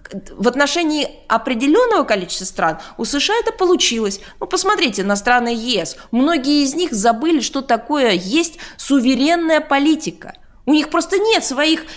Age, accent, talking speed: 20-39, native, 140 wpm